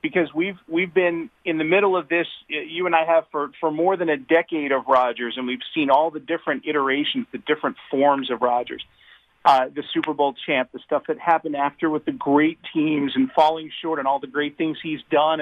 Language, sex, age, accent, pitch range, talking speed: English, male, 40-59, American, 145-175 Hz, 220 wpm